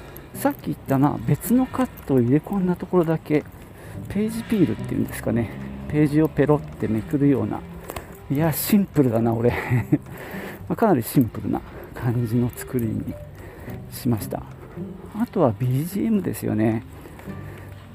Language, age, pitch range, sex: Japanese, 50-69, 110-150 Hz, male